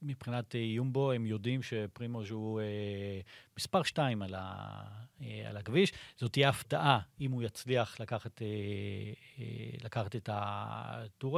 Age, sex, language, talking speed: 40-59, male, Hebrew, 110 wpm